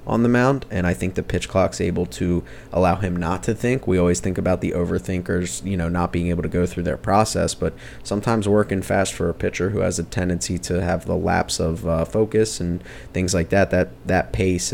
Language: English